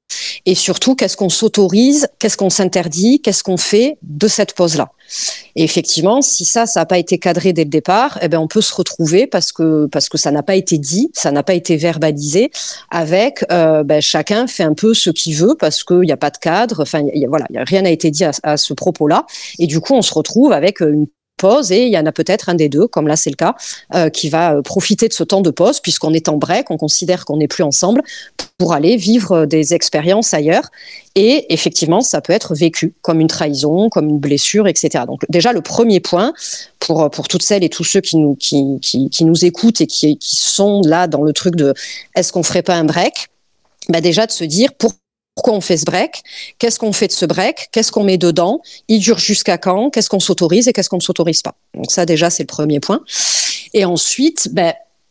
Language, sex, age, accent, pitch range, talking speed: French, female, 40-59, French, 160-205 Hz, 235 wpm